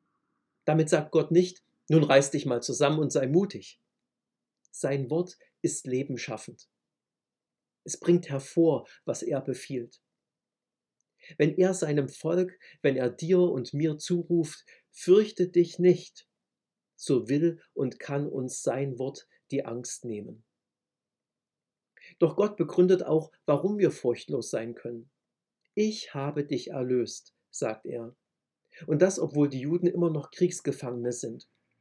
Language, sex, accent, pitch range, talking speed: German, male, German, 135-175 Hz, 130 wpm